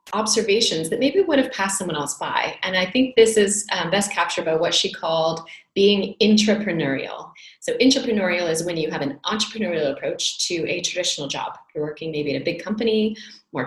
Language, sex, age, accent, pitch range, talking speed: English, female, 30-49, American, 150-185 Hz, 195 wpm